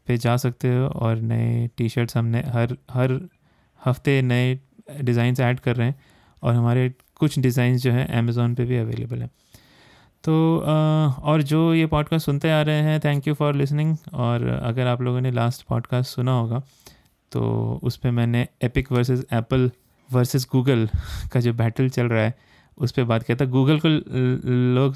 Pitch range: 115-130 Hz